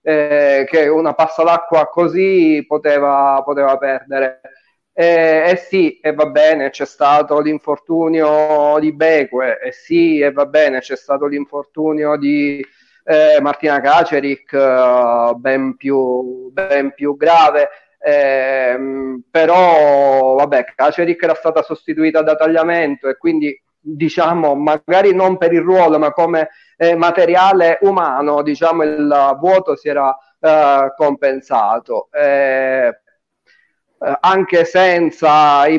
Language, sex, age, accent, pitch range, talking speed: Italian, male, 40-59, native, 140-165 Hz, 125 wpm